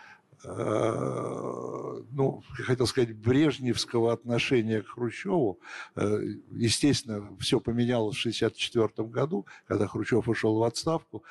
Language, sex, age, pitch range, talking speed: Russian, male, 60-79, 110-135 Hz, 100 wpm